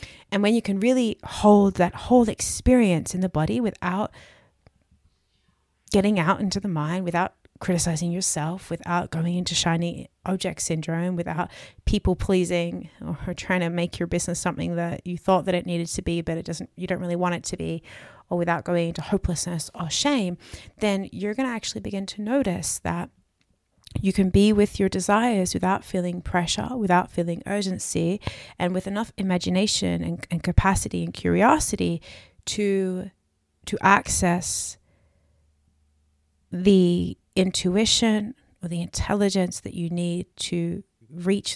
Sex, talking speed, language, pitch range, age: female, 150 wpm, English, 130-190 Hz, 30-49